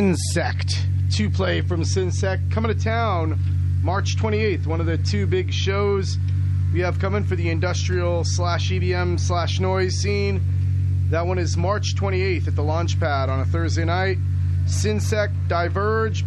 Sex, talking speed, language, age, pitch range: male, 150 wpm, English, 30-49, 90-95 Hz